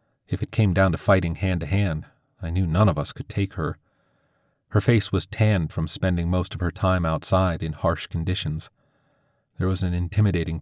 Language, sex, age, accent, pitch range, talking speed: English, male, 40-59, American, 85-110 Hz, 200 wpm